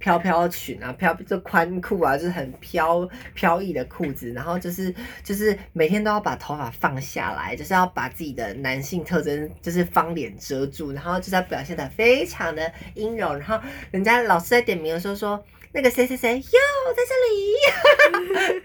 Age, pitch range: 20-39, 155-235 Hz